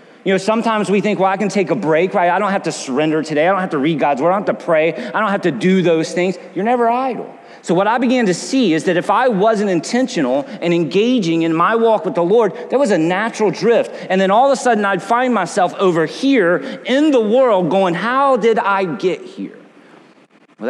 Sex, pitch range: male, 160-220 Hz